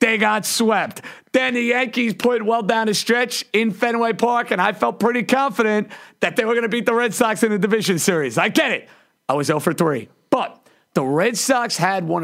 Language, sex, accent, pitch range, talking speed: English, male, American, 165-220 Hz, 225 wpm